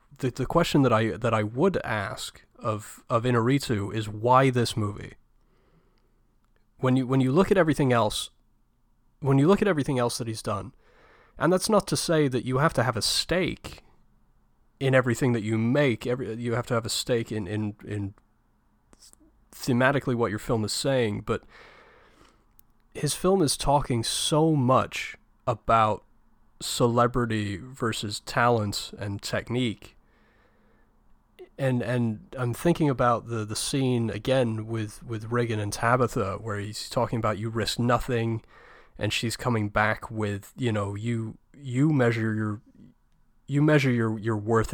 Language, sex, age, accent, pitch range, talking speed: English, male, 30-49, American, 110-130 Hz, 155 wpm